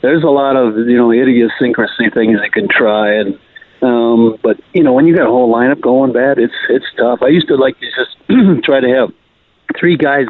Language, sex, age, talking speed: English, male, 50-69, 220 wpm